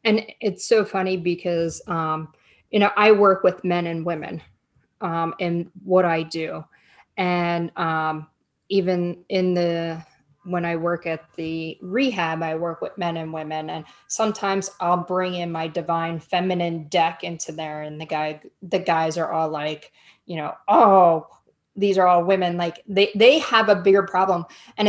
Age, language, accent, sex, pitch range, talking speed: 30-49, English, American, female, 170-210 Hz, 170 wpm